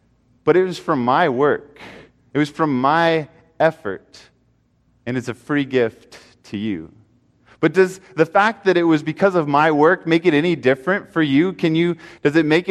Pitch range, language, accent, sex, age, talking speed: 125-165 Hz, English, American, male, 20-39, 185 wpm